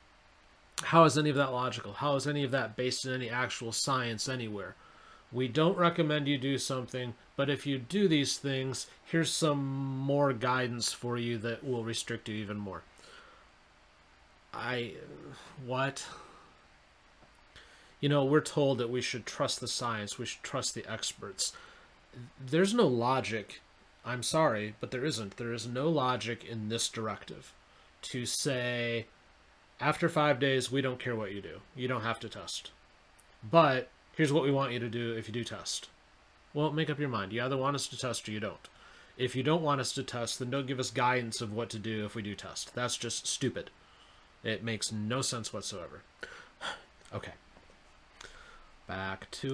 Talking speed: 175 wpm